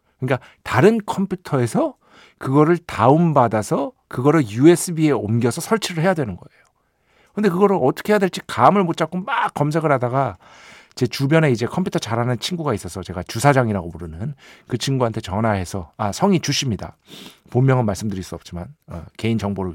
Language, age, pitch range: Korean, 50-69, 115-165 Hz